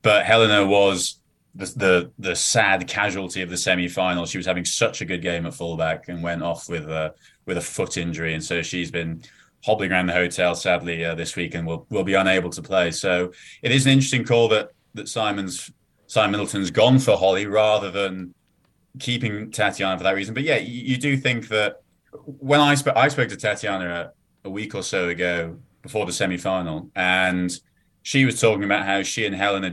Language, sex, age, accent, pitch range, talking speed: English, male, 30-49, British, 90-110 Hz, 210 wpm